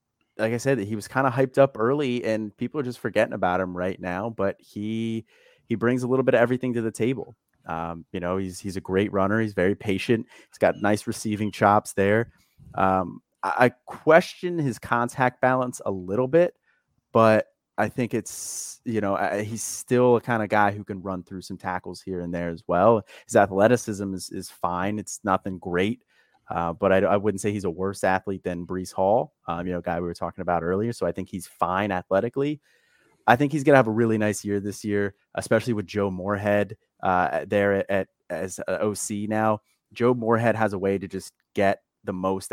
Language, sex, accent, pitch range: English, male, American, 95-115 Hz